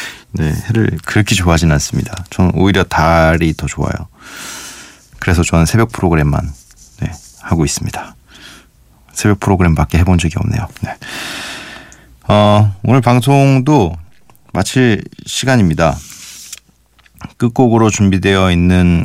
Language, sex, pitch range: Korean, male, 80-110 Hz